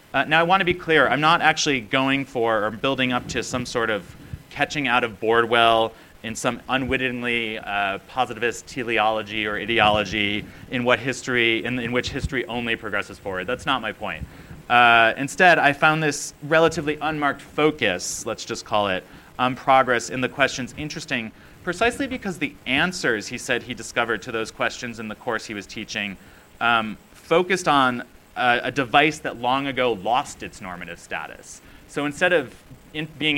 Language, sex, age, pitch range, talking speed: English, male, 30-49, 110-140 Hz, 175 wpm